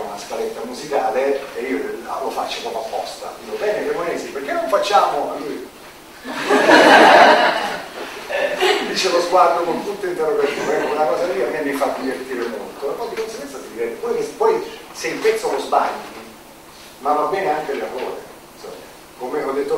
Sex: male